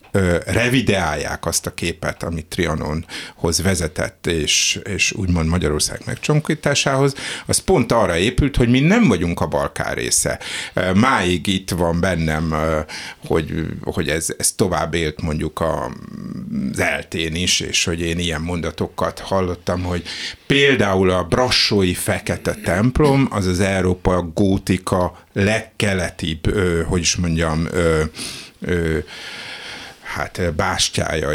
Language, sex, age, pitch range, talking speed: Hungarian, male, 60-79, 80-105 Hz, 115 wpm